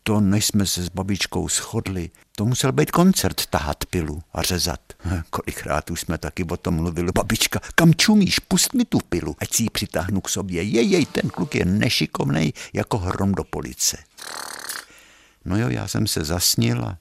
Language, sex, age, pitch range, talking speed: Czech, male, 60-79, 80-110 Hz, 180 wpm